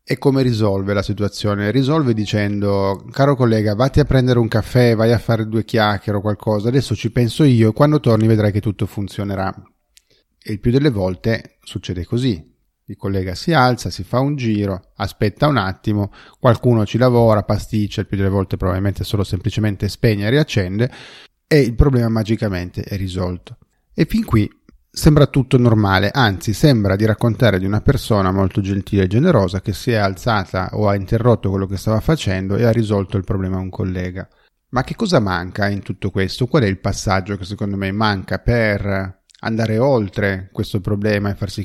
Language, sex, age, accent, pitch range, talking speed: Italian, male, 30-49, native, 100-120 Hz, 185 wpm